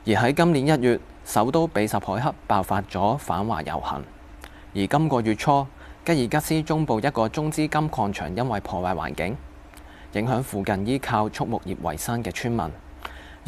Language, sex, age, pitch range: Chinese, male, 20-39, 95-125 Hz